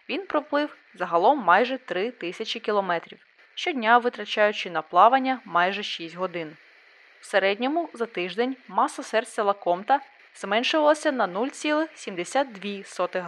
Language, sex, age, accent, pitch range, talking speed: Ukrainian, female, 20-39, native, 190-275 Hz, 105 wpm